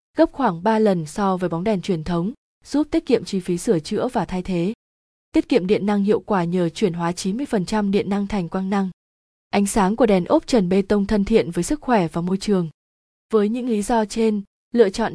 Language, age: Vietnamese, 20-39